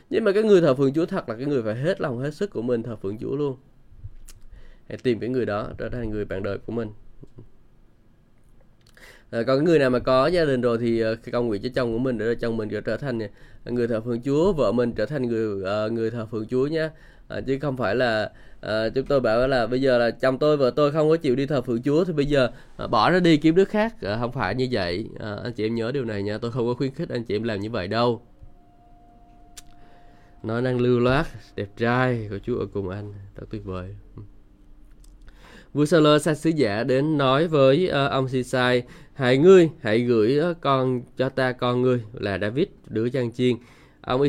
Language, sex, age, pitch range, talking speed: Vietnamese, male, 20-39, 110-135 Hz, 235 wpm